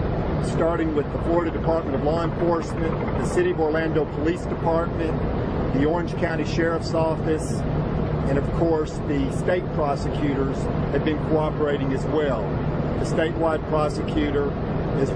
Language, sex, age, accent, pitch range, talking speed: English, male, 50-69, American, 145-165 Hz, 135 wpm